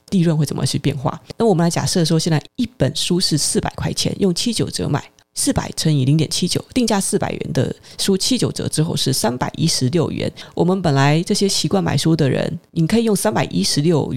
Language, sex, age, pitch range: Chinese, female, 20-39, 145-185 Hz